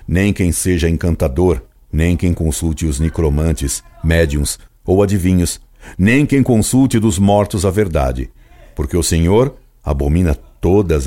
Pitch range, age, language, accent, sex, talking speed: 75-105 Hz, 60-79, Portuguese, Brazilian, male, 130 wpm